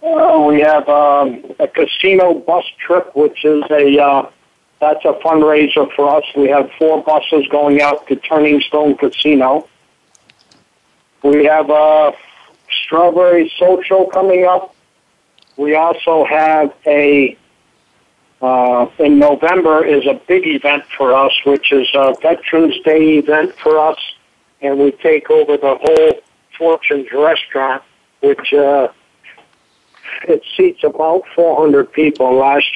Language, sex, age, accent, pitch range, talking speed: English, male, 50-69, American, 145-165 Hz, 135 wpm